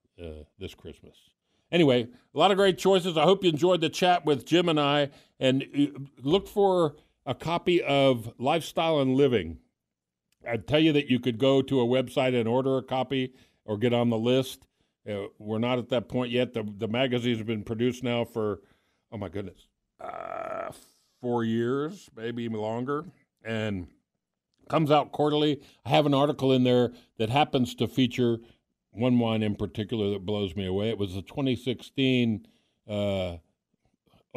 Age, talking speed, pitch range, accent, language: 50-69, 175 wpm, 105-140 Hz, American, English